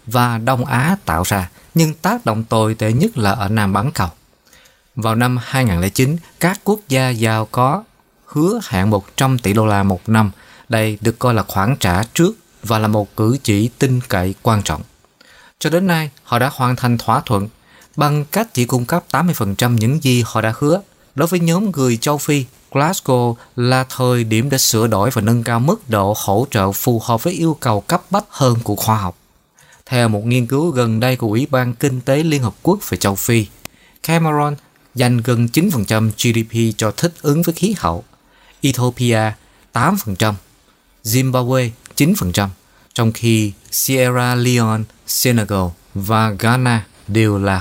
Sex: male